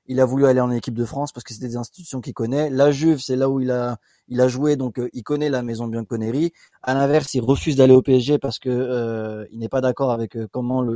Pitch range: 125-155 Hz